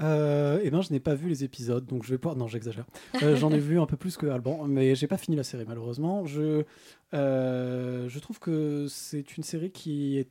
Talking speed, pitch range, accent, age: 250 wpm, 125-155 Hz, French, 20-39